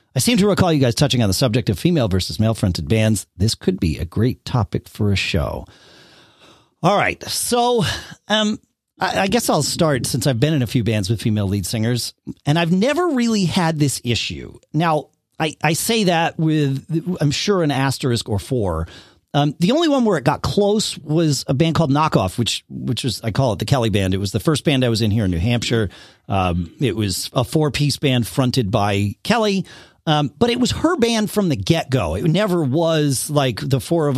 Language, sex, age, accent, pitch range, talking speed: English, male, 40-59, American, 115-185 Hz, 220 wpm